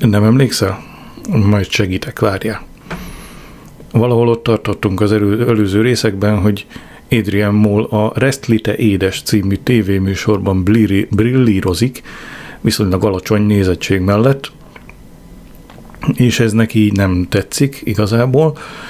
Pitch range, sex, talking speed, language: 100-120 Hz, male, 100 wpm, Hungarian